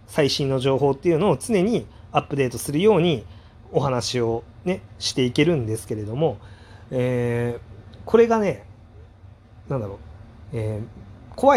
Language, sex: Japanese, male